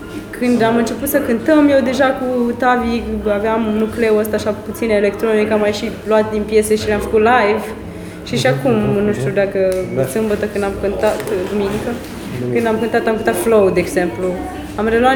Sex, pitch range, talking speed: female, 205-255 Hz, 185 wpm